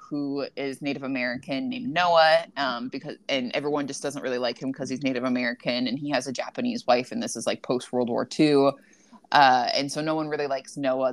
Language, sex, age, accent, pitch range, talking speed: English, female, 20-39, American, 135-160 Hz, 215 wpm